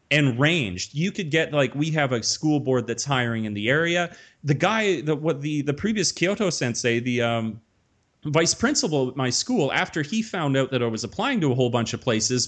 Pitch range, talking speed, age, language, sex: 125-150 Hz, 220 wpm, 30-49, English, male